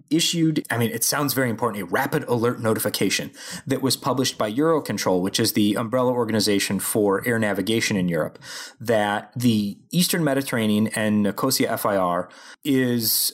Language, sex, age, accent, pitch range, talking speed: English, male, 30-49, American, 115-150 Hz, 155 wpm